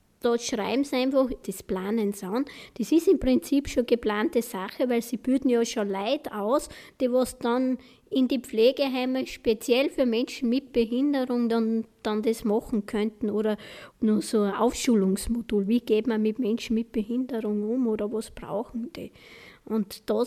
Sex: female